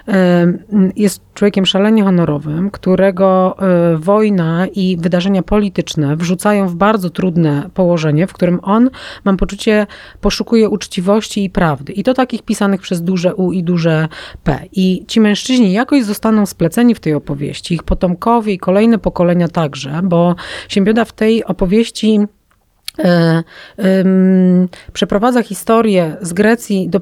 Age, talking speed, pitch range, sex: 30-49, 130 wpm, 180-210 Hz, female